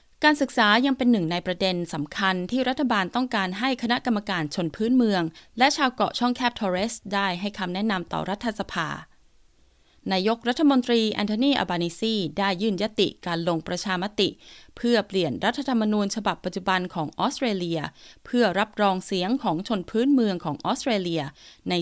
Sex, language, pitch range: female, Thai, 175-230 Hz